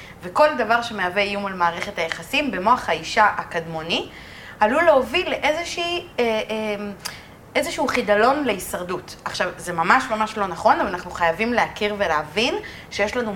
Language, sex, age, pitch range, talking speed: Hebrew, female, 30-49, 180-260 Hz, 135 wpm